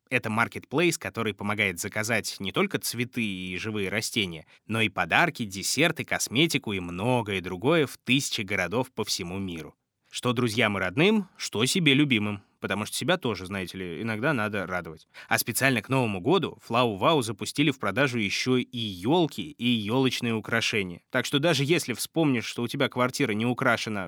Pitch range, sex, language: 100-135 Hz, male, Russian